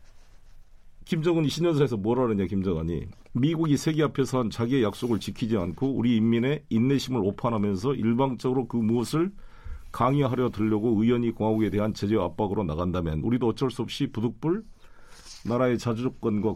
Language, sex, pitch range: Korean, male, 95-140 Hz